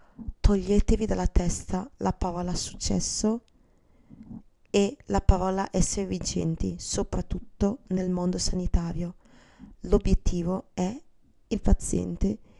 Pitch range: 170-205 Hz